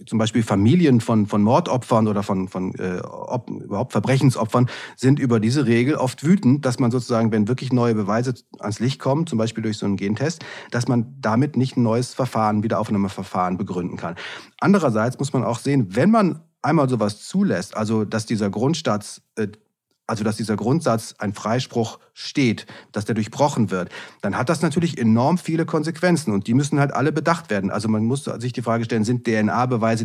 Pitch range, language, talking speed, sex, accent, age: 110-145 Hz, German, 180 wpm, male, German, 30-49